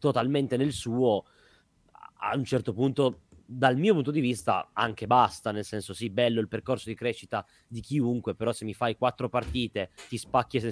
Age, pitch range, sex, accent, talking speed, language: 20-39, 110-130 Hz, male, native, 185 wpm, Italian